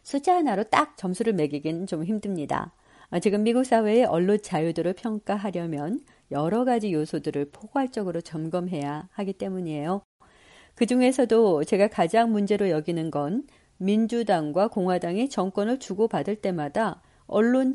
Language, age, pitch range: Korean, 40-59, 170-230 Hz